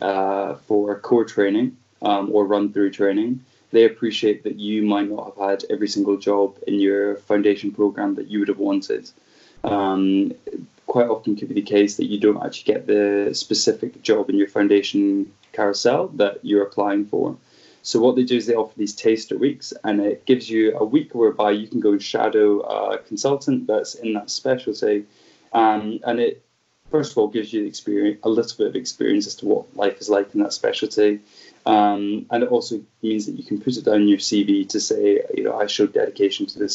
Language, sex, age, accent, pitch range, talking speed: English, male, 20-39, British, 100-120 Hz, 205 wpm